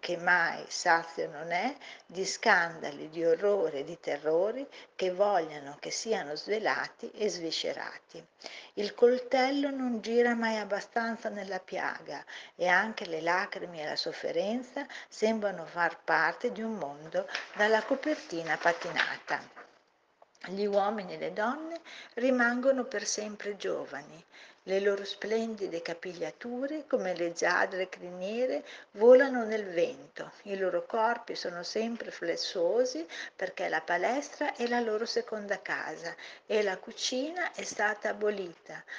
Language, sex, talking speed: Italian, female, 125 wpm